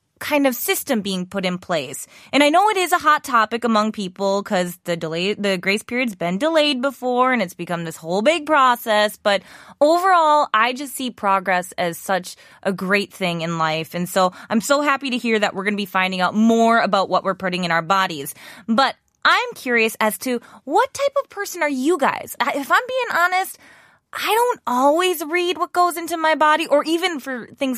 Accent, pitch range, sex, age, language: American, 195-300 Hz, female, 20-39, Korean